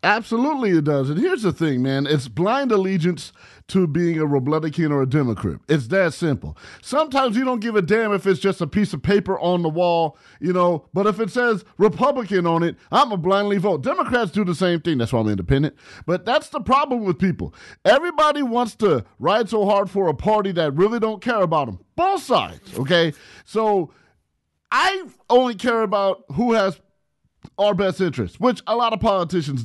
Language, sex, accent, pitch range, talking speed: English, male, American, 165-225 Hz, 200 wpm